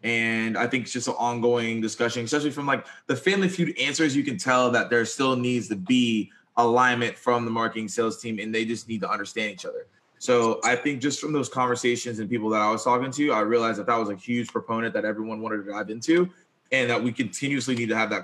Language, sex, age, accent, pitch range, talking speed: English, male, 20-39, American, 115-140 Hz, 245 wpm